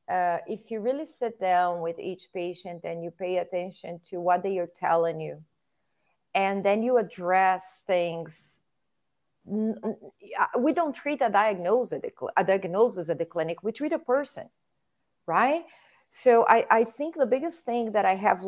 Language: English